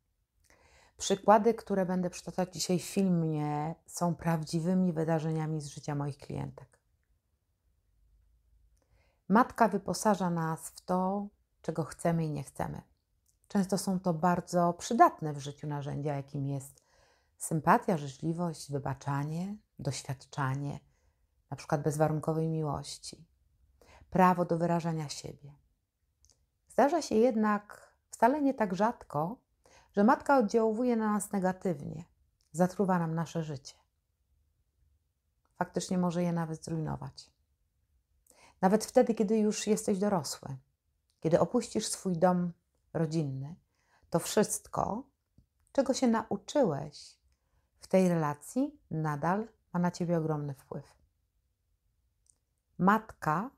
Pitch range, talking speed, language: 130-190 Hz, 105 wpm, Polish